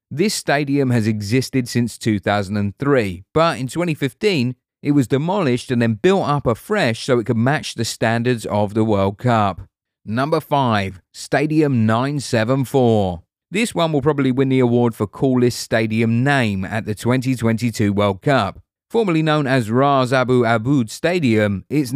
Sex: male